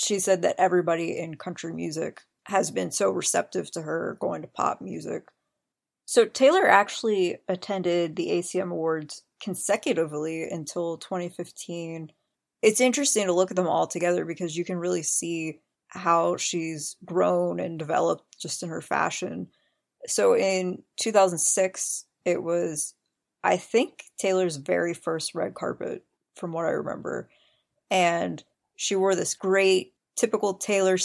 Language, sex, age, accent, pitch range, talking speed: English, female, 20-39, American, 170-195 Hz, 140 wpm